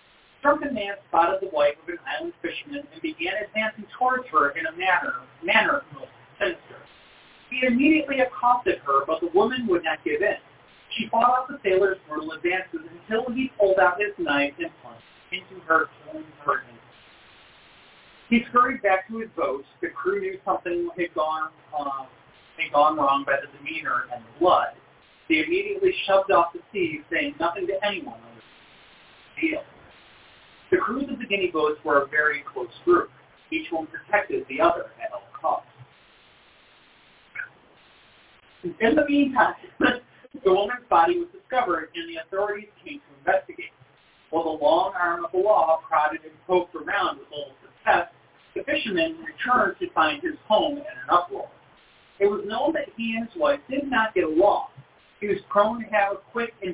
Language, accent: English, American